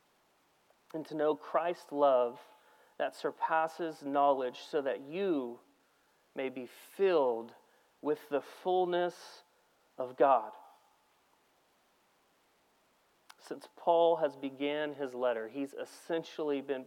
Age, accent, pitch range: 40-59, American, 140-200 Hz